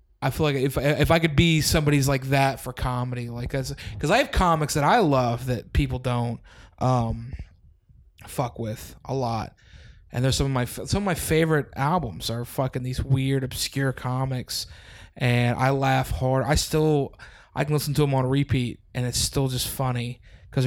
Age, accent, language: 20-39, American, English